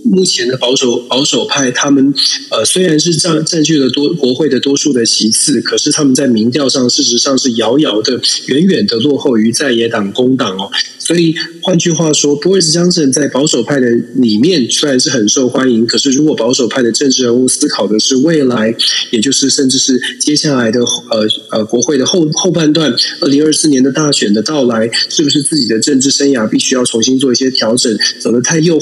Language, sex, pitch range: Chinese, male, 125-155 Hz